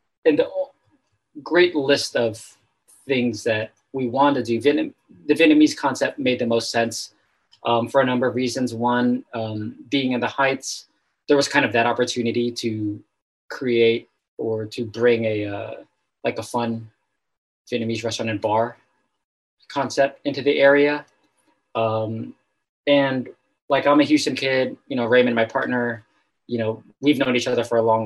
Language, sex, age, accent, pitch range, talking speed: English, male, 20-39, American, 110-130 Hz, 160 wpm